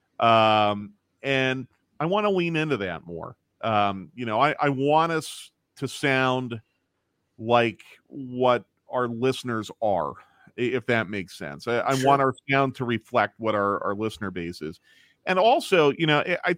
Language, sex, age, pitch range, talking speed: English, male, 40-59, 110-145 Hz, 165 wpm